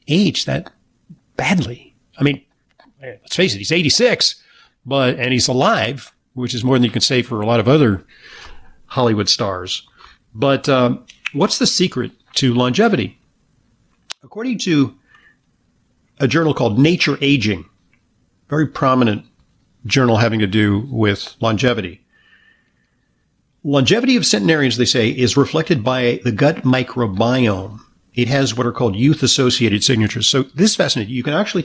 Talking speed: 140 wpm